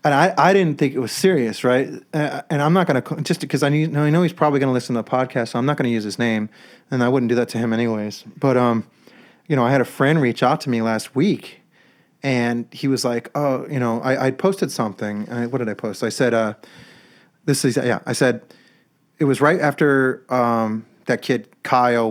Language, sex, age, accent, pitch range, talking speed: English, male, 30-49, American, 115-145 Hz, 240 wpm